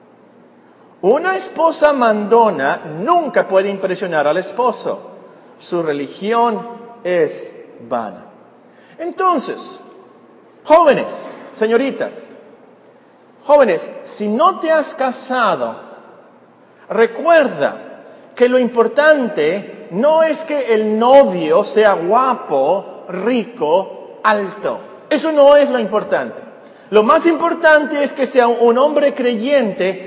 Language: Spanish